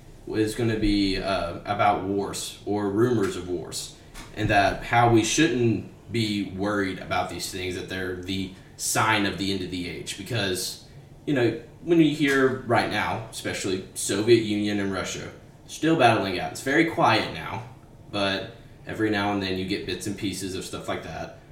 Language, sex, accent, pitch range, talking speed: English, male, American, 95-115 Hz, 180 wpm